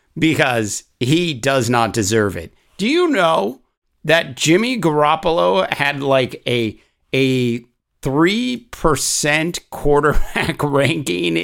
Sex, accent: male, American